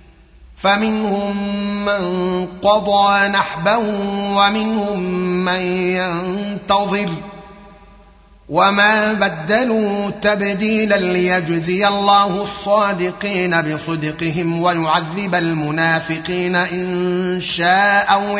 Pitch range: 170-200 Hz